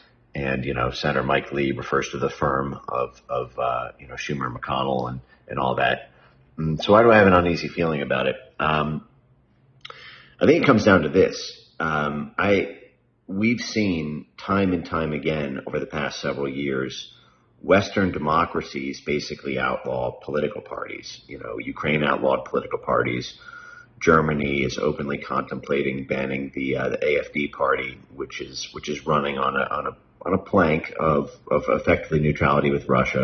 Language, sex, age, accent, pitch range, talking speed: English, male, 40-59, American, 70-85 Hz, 170 wpm